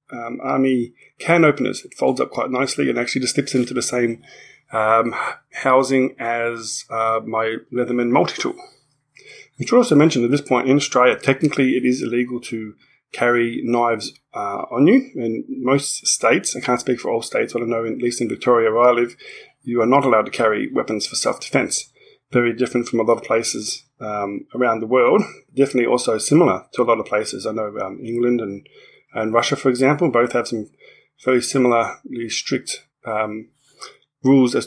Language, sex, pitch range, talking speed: English, male, 115-130 Hz, 185 wpm